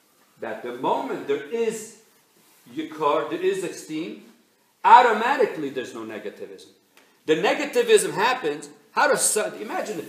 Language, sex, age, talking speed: English, male, 50-69, 125 wpm